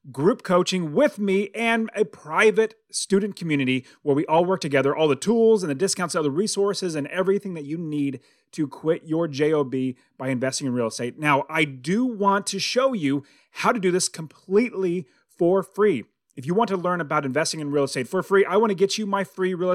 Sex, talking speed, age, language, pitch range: male, 215 wpm, 30-49, English, 150-200 Hz